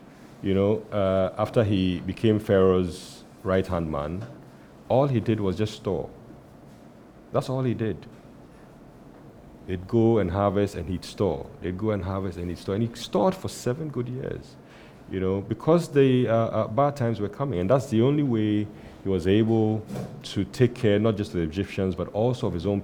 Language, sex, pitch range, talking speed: English, male, 90-115 Hz, 180 wpm